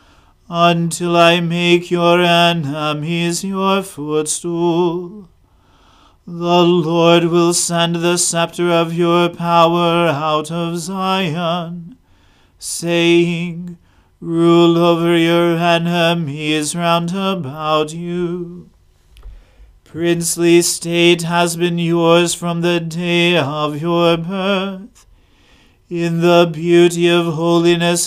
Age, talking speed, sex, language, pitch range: 40-59, 90 wpm, male, English, 165-175 Hz